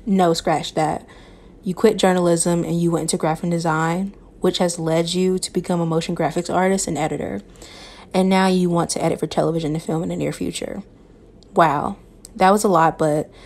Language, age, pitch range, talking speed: English, 20-39, 160-185 Hz, 195 wpm